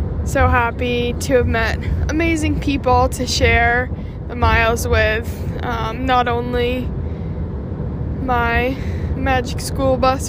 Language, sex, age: English, female, 20-39